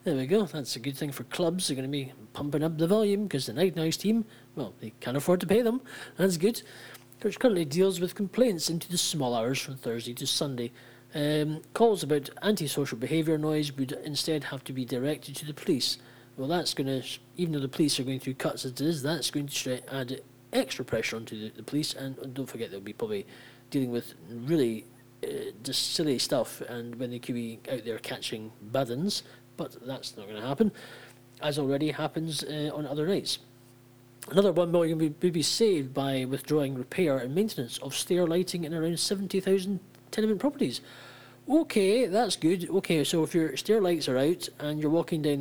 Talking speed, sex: 200 wpm, male